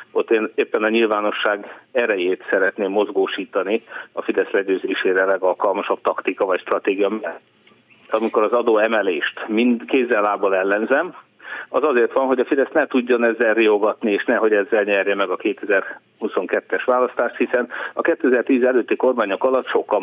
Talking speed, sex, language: 145 wpm, male, Hungarian